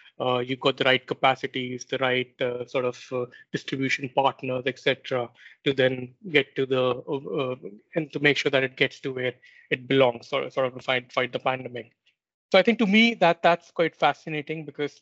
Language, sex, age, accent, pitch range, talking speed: English, male, 20-39, Indian, 125-140 Hz, 200 wpm